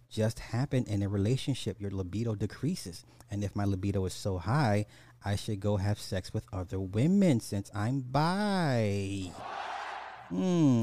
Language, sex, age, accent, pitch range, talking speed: English, male, 30-49, American, 95-125 Hz, 150 wpm